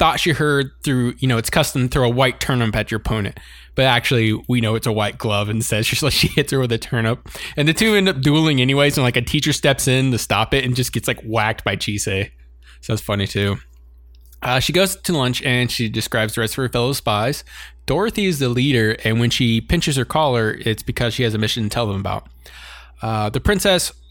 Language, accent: English, American